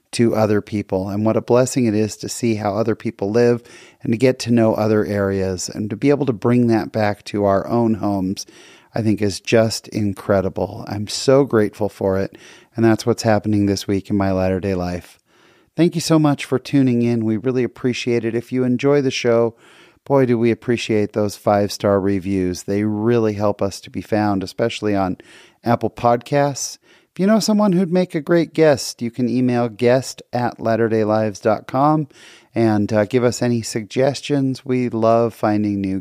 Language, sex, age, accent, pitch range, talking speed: English, male, 30-49, American, 105-130 Hz, 190 wpm